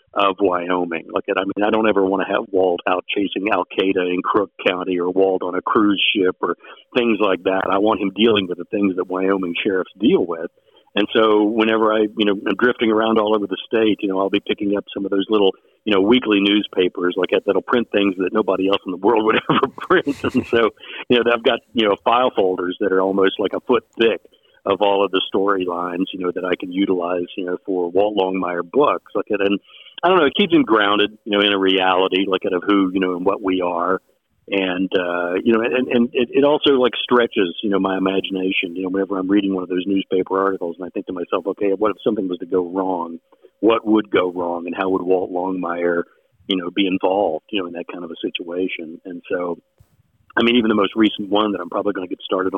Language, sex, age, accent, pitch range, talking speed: English, male, 50-69, American, 90-105 Hz, 240 wpm